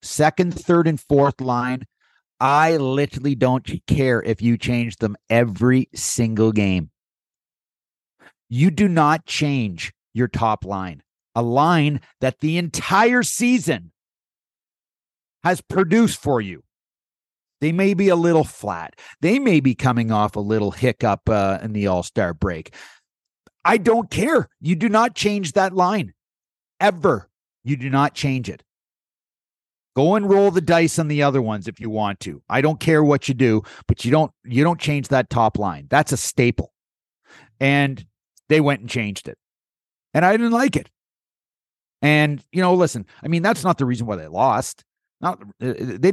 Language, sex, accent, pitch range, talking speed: English, male, American, 115-165 Hz, 160 wpm